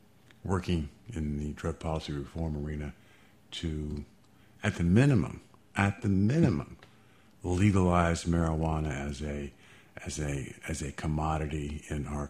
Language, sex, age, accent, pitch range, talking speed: English, male, 50-69, American, 80-105 Hz, 120 wpm